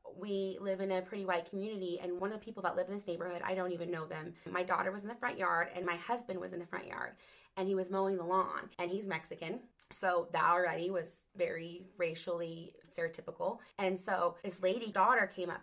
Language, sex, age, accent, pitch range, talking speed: English, female, 20-39, American, 180-225 Hz, 230 wpm